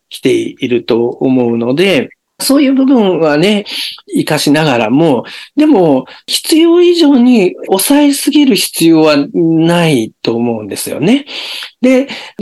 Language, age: Japanese, 50-69